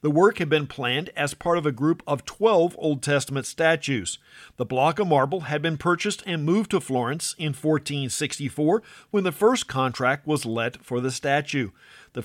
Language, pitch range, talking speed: English, 135-175 Hz, 185 wpm